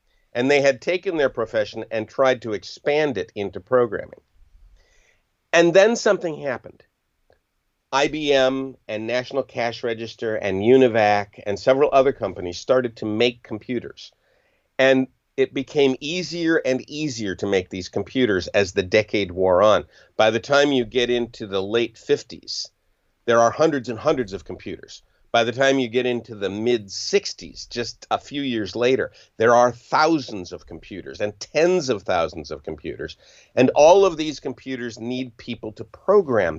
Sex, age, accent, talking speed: male, 50-69, American, 155 wpm